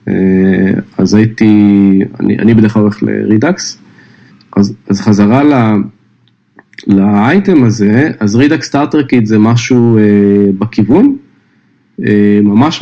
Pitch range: 105-135 Hz